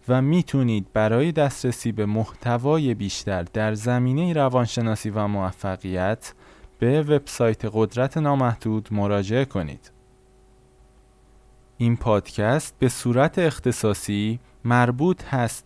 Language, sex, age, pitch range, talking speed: Persian, male, 20-39, 110-135 Hz, 95 wpm